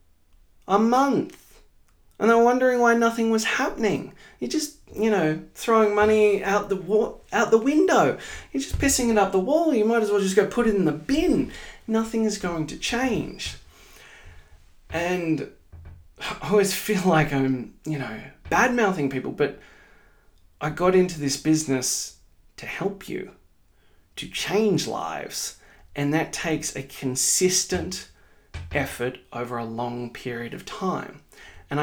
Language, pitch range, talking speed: English, 135-205 Hz, 150 wpm